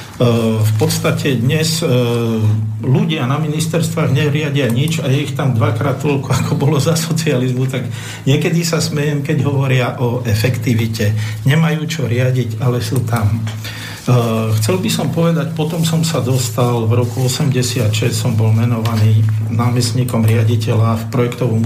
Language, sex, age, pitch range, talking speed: Slovak, male, 50-69, 115-135 Hz, 140 wpm